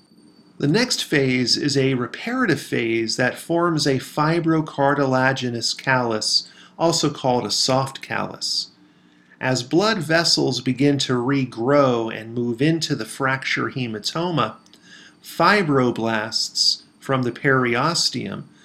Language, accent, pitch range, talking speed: English, American, 120-150 Hz, 105 wpm